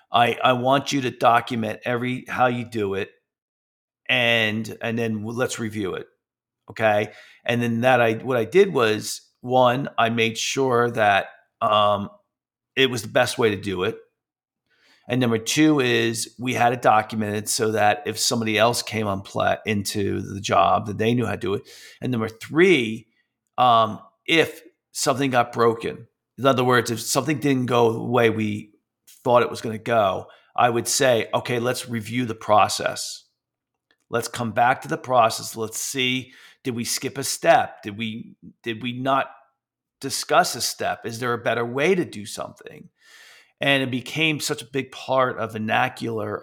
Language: English